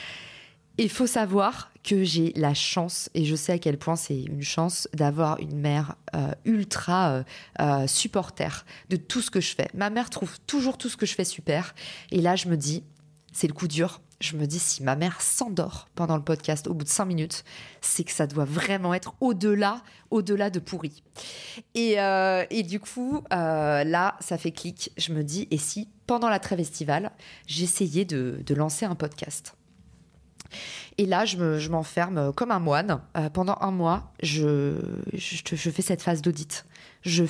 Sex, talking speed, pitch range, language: female, 190 wpm, 155-195 Hz, French